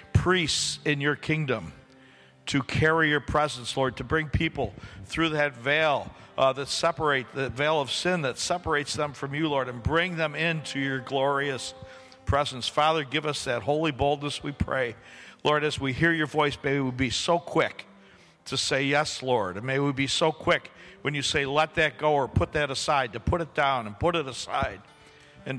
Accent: American